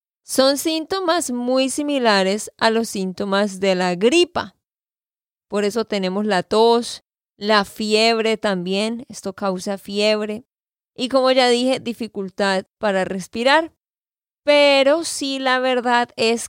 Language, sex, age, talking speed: Spanish, female, 20-39, 120 wpm